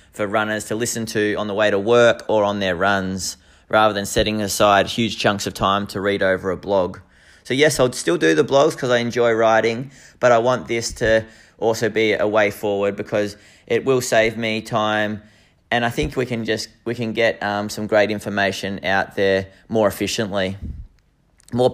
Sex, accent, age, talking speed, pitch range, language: male, Australian, 20-39, 200 wpm, 100-120 Hz, English